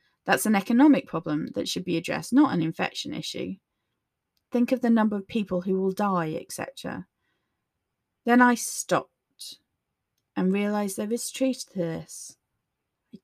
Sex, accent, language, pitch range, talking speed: female, British, English, 180-240 Hz, 150 wpm